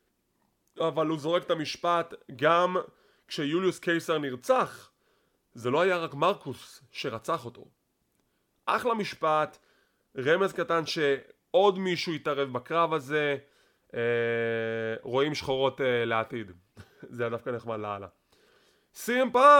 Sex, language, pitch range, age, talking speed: male, English, 130-165 Hz, 20-39, 95 wpm